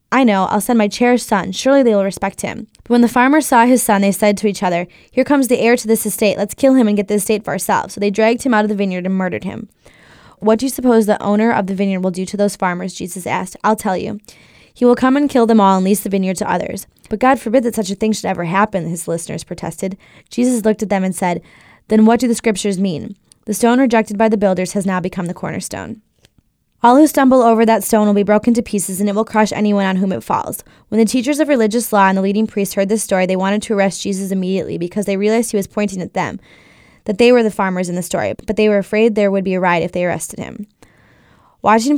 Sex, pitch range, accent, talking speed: female, 195-230 Hz, American, 270 wpm